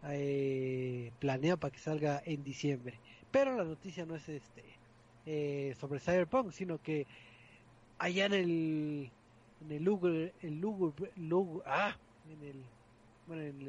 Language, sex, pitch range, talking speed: Spanish, male, 140-195 Hz, 135 wpm